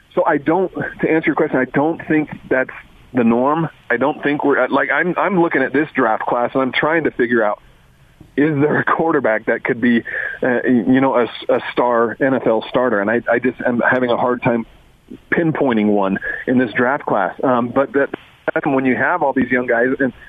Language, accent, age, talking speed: English, American, 40-59, 215 wpm